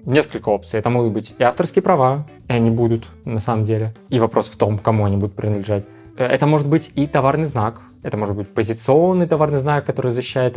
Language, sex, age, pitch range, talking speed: Russian, male, 20-39, 110-135 Hz, 205 wpm